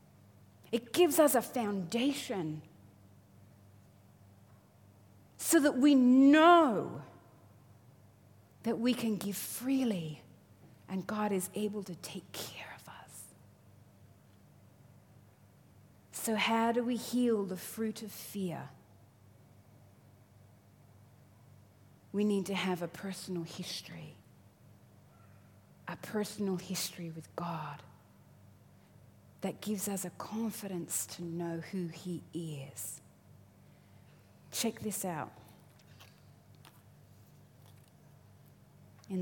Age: 30-49